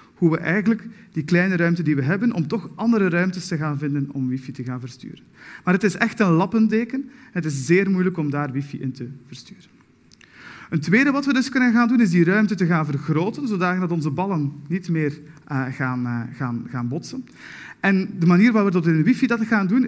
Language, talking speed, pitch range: Dutch, 220 wpm, 150-215 Hz